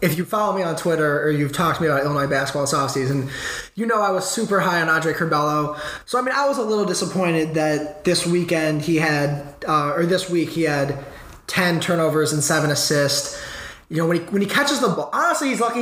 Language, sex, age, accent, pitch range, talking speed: English, male, 20-39, American, 155-195 Hz, 230 wpm